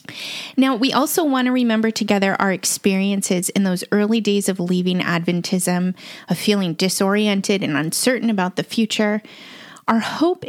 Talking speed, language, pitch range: 150 wpm, English, 195-245 Hz